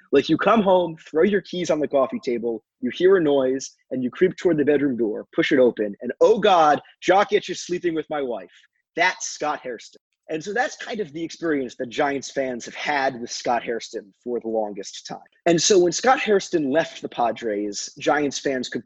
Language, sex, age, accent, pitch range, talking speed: English, male, 20-39, American, 130-210 Hz, 215 wpm